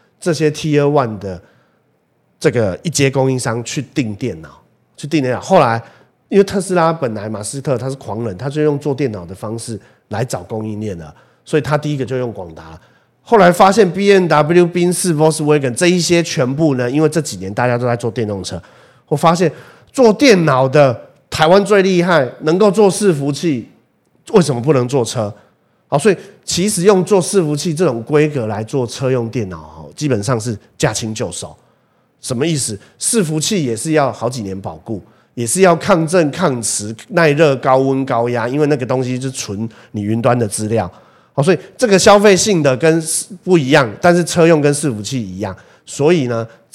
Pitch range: 115-165 Hz